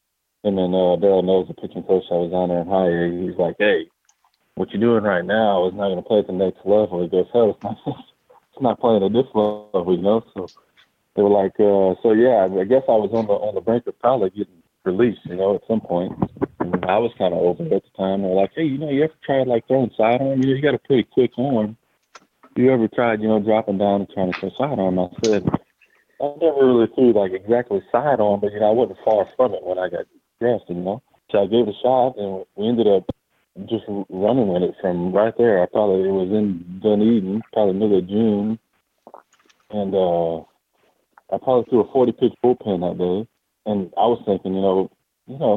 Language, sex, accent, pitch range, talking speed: English, male, American, 90-115 Hz, 235 wpm